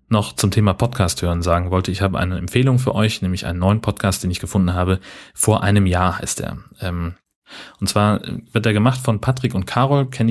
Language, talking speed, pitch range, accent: German, 210 wpm, 90-110 Hz, German